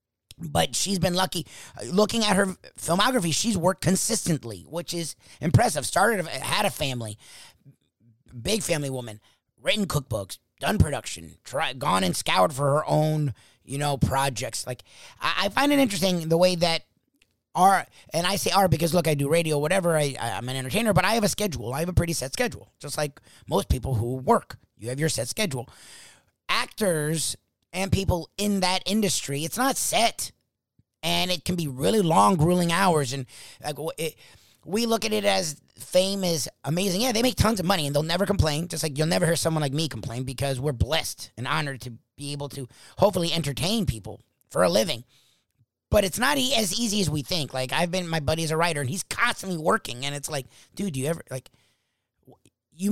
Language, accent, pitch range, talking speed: English, American, 130-185 Hz, 195 wpm